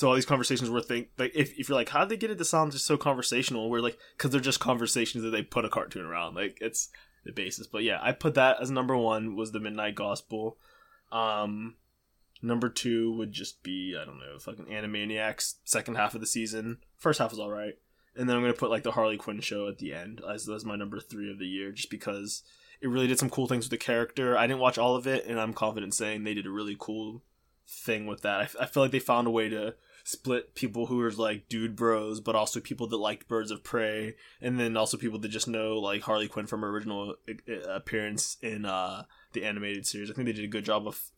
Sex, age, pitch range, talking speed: male, 20-39, 105-125 Hz, 250 wpm